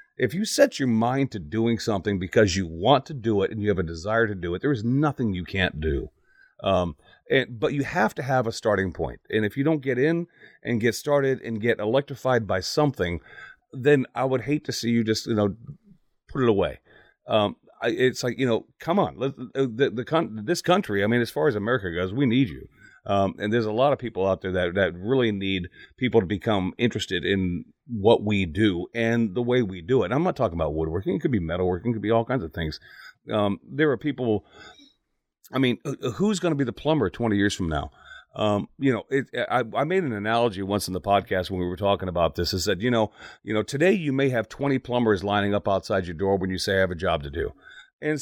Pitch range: 100-135 Hz